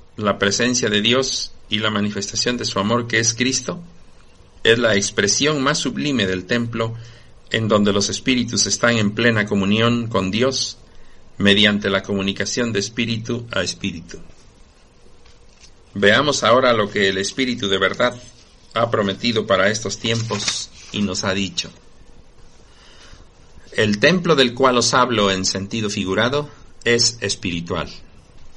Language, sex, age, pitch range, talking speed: Spanish, male, 50-69, 95-120 Hz, 135 wpm